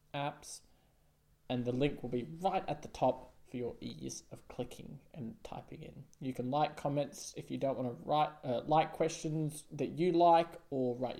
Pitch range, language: 135-180 Hz, English